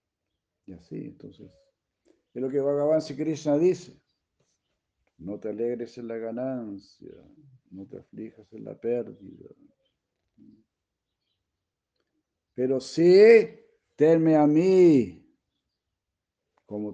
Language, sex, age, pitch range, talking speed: Spanish, male, 60-79, 105-150 Hz, 100 wpm